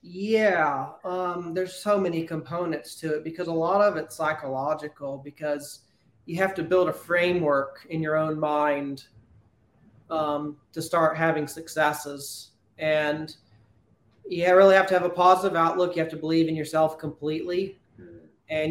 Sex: male